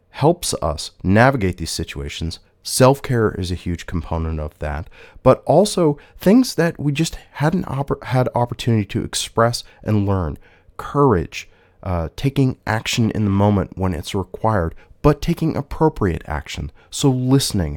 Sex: male